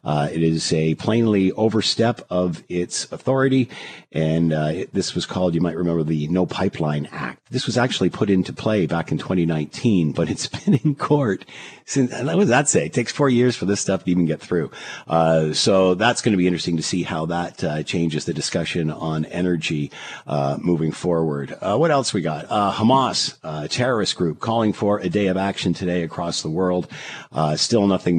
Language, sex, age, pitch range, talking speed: English, male, 50-69, 80-100 Hz, 200 wpm